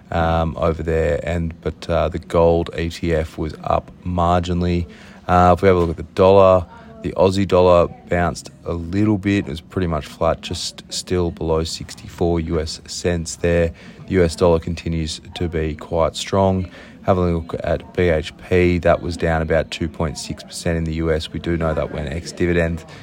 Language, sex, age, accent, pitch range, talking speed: English, male, 30-49, Australian, 85-90 Hz, 180 wpm